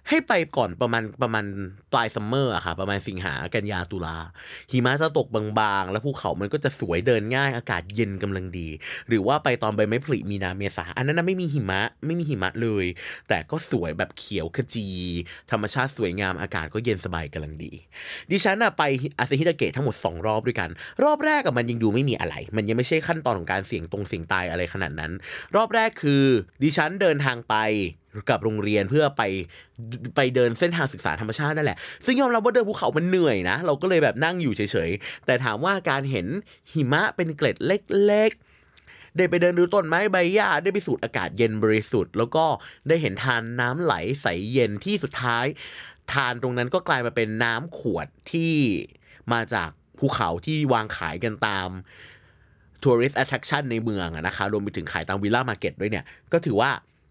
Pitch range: 100-145 Hz